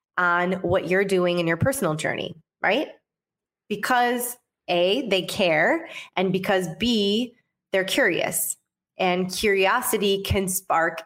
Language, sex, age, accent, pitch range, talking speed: English, female, 20-39, American, 175-205 Hz, 120 wpm